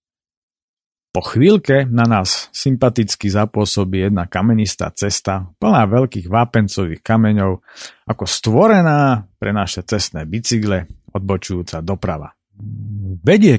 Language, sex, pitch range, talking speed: Slovak, male, 100-130 Hz, 95 wpm